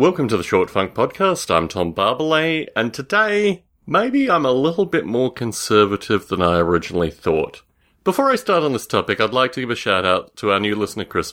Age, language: 30-49, English